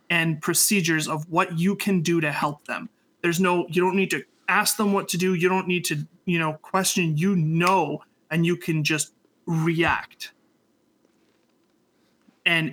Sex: male